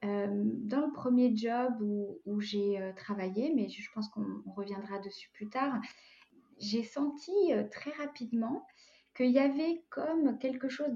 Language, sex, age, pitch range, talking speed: French, female, 20-39, 210-270 Hz, 165 wpm